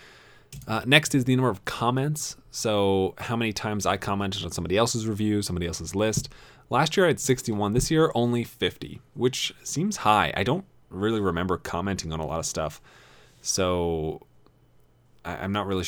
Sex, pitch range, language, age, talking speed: male, 90-125 Hz, English, 30-49, 175 wpm